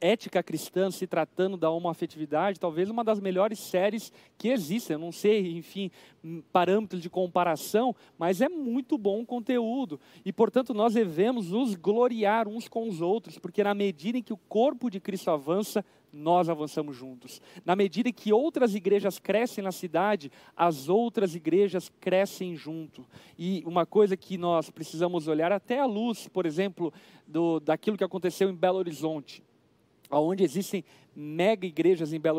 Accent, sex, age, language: Brazilian, male, 40-59, Portuguese